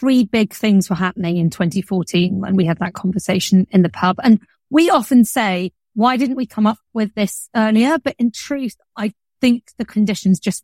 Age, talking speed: 30-49, 195 wpm